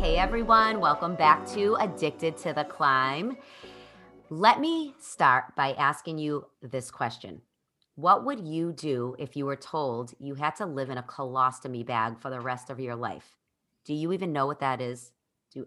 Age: 30-49